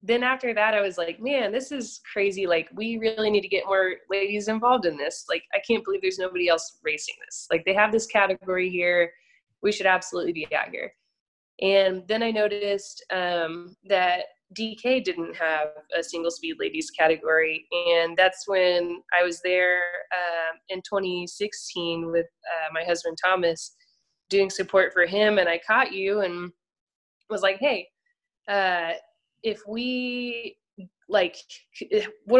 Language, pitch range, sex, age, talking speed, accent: English, 175-215 Hz, female, 20-39, 160 wpm, American